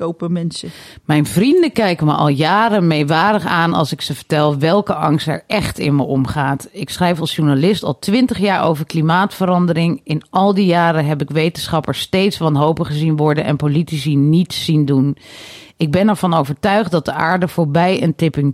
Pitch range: 150-180 Hz